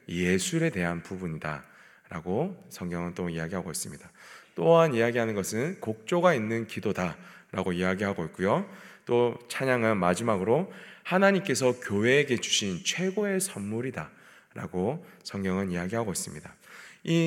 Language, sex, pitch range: Korean, male, 95-150 Hz